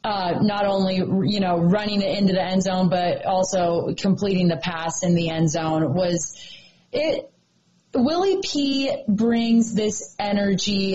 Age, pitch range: 20-39, 180-220 Hz